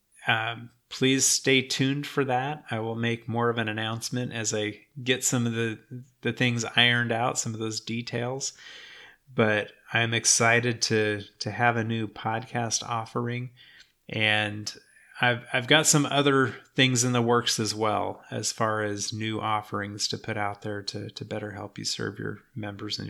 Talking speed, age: 175 wpm, 30-49